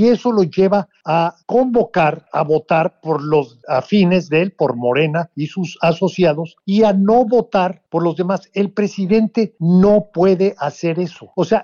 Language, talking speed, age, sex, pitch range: Spanish, 170 wpm, 50-69, male, 155-205 Hz